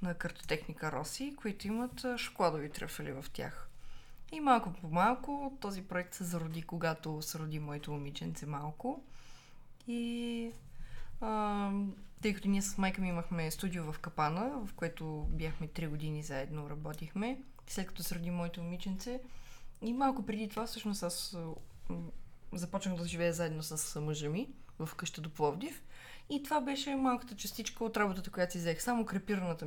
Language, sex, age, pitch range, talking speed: Bulgarian, female, 20-39, 165-205 Hz, 155 wpm